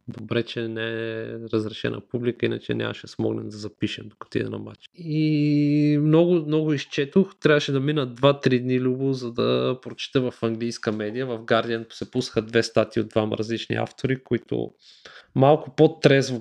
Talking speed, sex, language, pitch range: 160 wpm, male, Bulgarian, 115-135 Hz